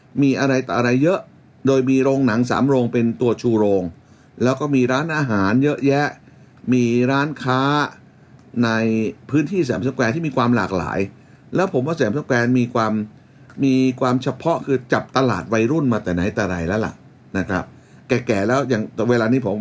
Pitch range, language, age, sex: 120-145 Hz, Thai, 60-79, male